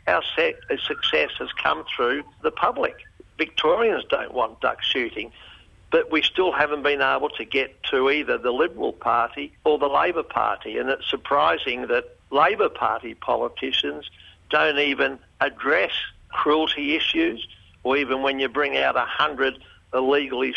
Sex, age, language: male, 60-79, English